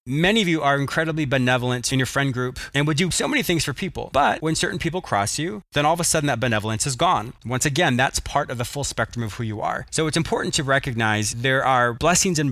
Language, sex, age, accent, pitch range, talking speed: English, male, 20-39, American, 125-160 Hz, 260 wpm